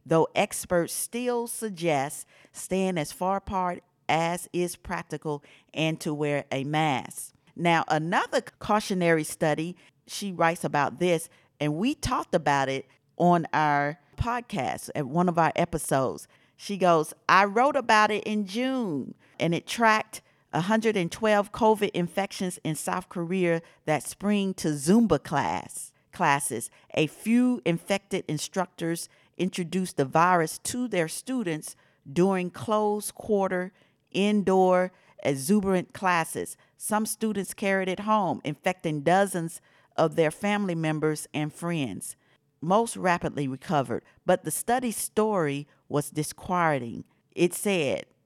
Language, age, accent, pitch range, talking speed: English, 50-69, American, 150-195 Hz, 125 wpm